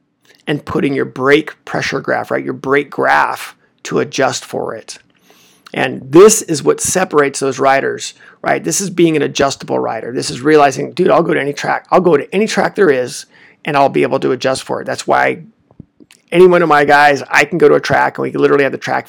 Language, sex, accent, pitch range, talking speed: English, male, American, 145-195 Hz, 225 wpm